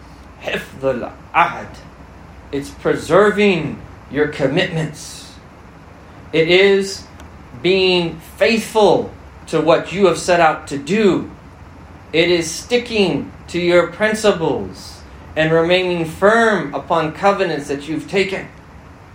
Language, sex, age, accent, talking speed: English, male, 30-49, American, 100 wpm